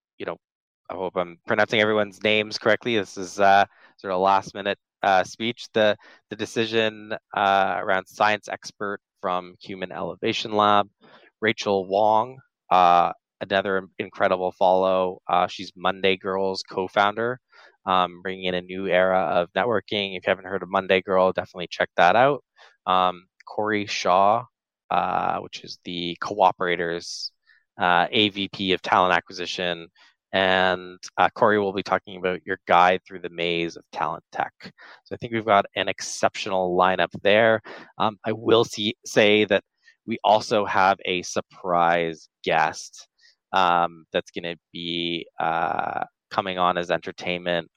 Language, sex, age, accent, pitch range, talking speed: English, male, 20-39, American, 90-105 Hz, 145 wpm